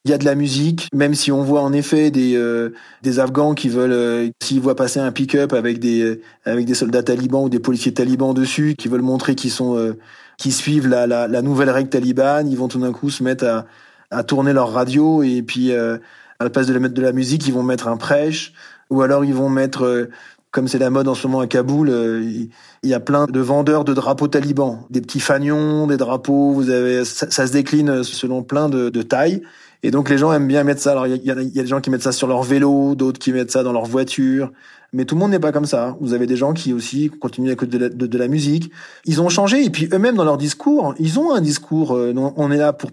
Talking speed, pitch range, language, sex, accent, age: 265 wpm, 125-145 Hz, French, male, French, 30-49